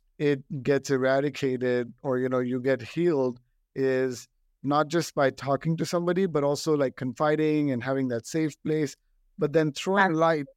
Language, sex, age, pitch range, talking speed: English, male, 50-69, 130-150 Hz, 165 wpm